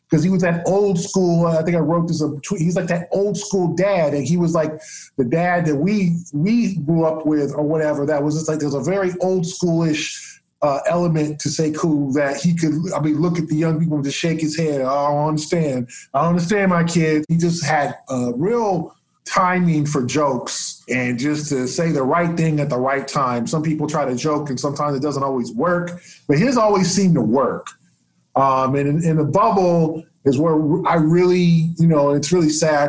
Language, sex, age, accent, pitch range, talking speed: English, male, 20-39, American, 145-170 Hz, 225 wpm